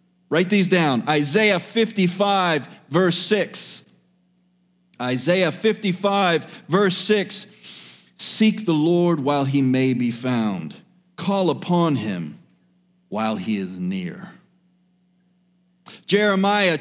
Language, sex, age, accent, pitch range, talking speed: English, male, 40-59, American, 180-245 Hz, 95 wpm